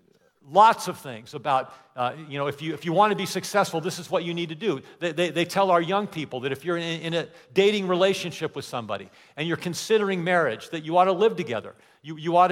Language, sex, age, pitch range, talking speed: English, male, 50-69, 155-200 Hz, 250 wpm